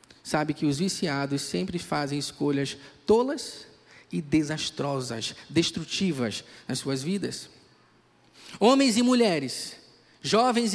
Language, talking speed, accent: Portuguese, 100 wpm, Brazilian